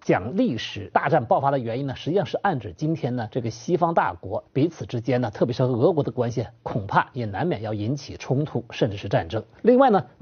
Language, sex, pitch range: Chinese, male, 120-165 Hz